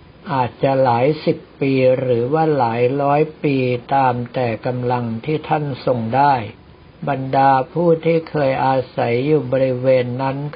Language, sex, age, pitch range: Thai, male, 60-79, 125-155 Hz